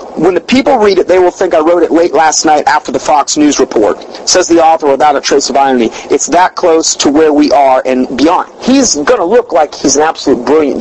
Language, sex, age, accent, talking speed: English, male, 40-59, American, 250 wpm